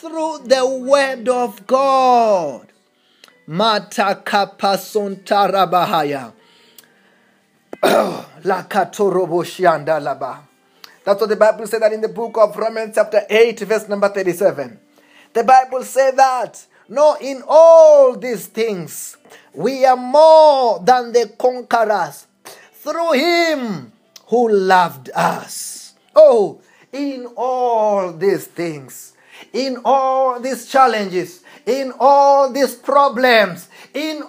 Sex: male